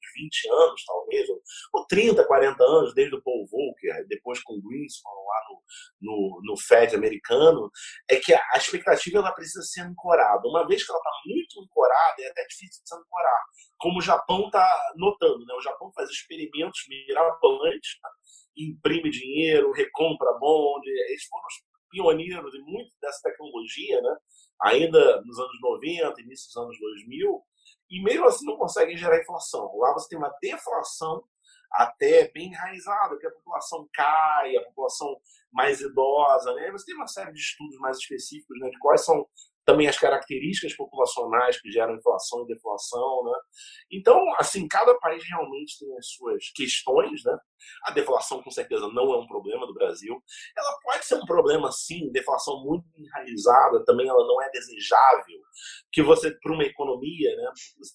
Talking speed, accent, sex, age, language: 170 wpm, Brazilian, male, 40-59, Portuguese